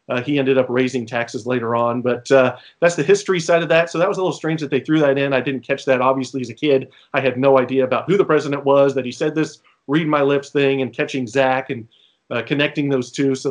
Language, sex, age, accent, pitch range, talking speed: English, male, 30-49, American, 135-180 Hz, 260 wpm